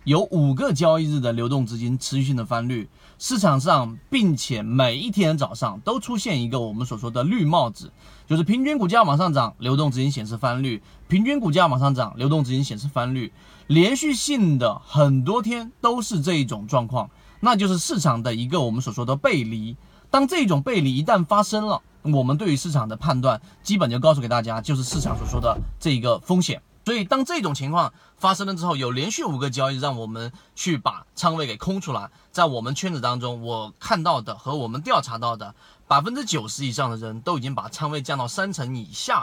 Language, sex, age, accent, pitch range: Chinese, male, 30-49, native, 125-175 Hz